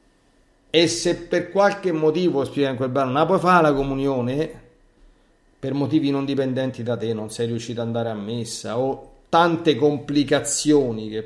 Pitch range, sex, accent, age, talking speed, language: 115-150 Hz, male, native, 40-59, 145 wpm, Italian